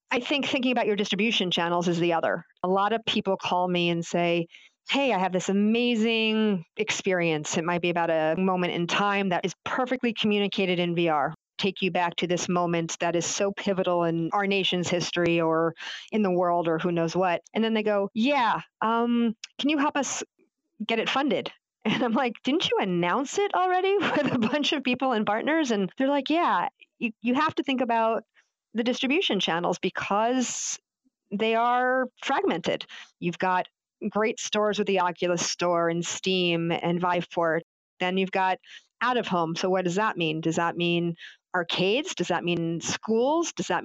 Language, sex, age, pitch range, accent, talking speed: English, female, 40-59, 175-240 Hz, American, 190 wpm